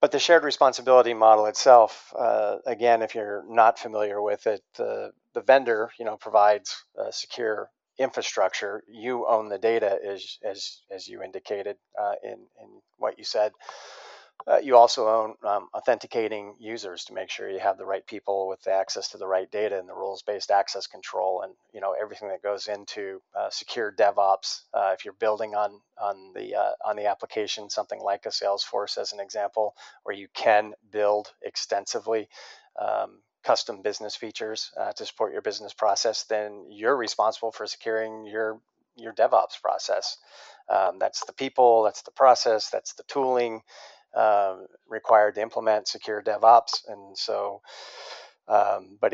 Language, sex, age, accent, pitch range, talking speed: English, male, 40-59, American, 105-115 Hz, 170 wpm